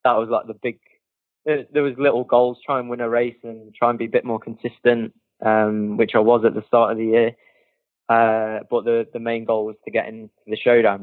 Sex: male